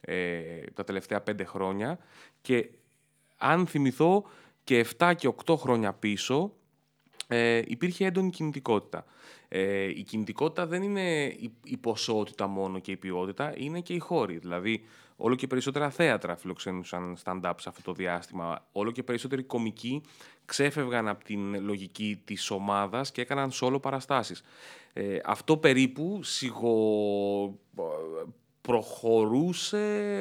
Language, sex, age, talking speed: Greek, male, 30-49, 125 wpm